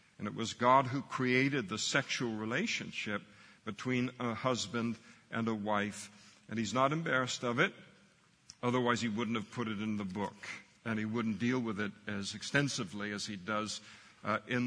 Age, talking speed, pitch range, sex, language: 60-79, 175 wpm, 110-130 Hz, male, English